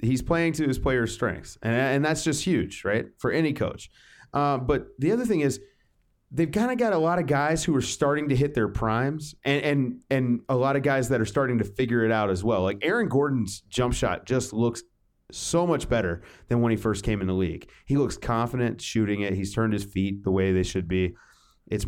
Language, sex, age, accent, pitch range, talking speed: English, male, 30-49, American, 110-140 Hz, 235 wpm